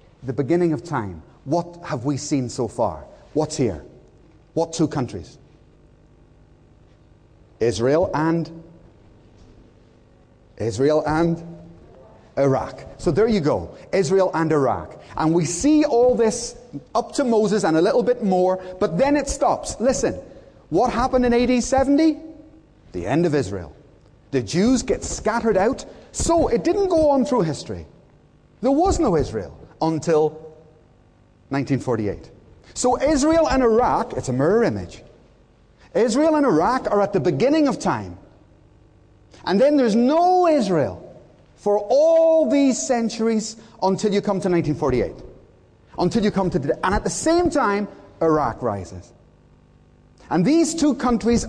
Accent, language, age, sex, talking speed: British, English, 30-49, male, 140 wpm